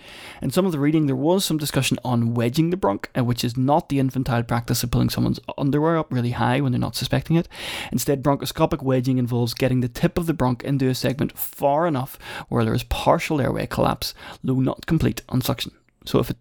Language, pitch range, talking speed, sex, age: English, 120-150 Hz, 220 wpm, male, 20-39